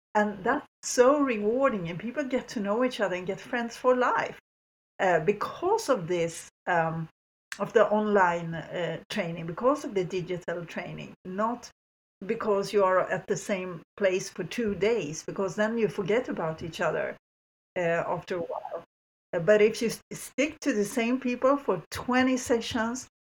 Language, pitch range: English, 170-215 Hz